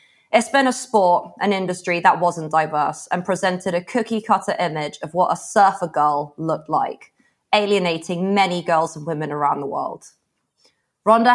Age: 20-39